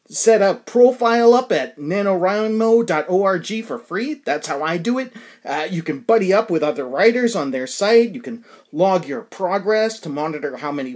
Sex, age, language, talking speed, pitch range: male, 30-49, English, 180 wpm, 165-235 Hz